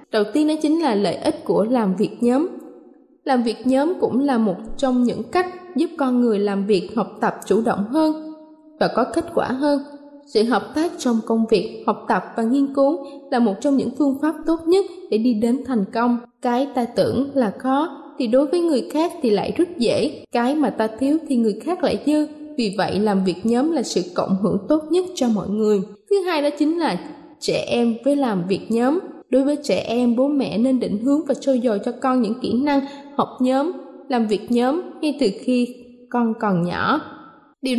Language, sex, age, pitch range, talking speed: Vietnamese, female, 10-29, 225-300 Hz, 215 wpm